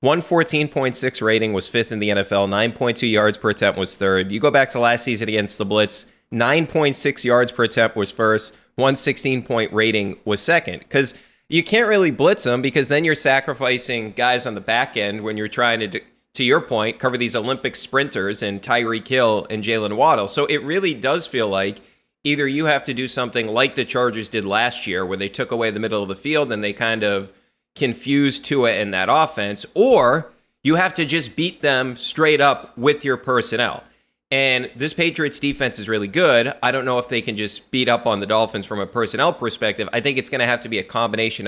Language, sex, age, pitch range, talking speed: English, male, 30-49, 105-140 Hz, 210 wpm